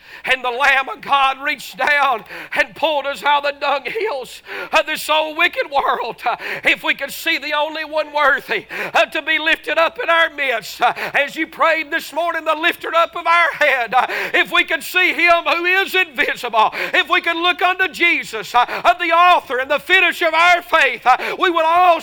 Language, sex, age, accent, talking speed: English, male, 50-69, American, 195 wpm